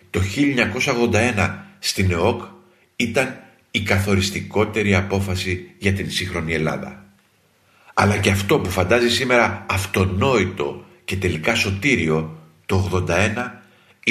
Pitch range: 95-115 Hz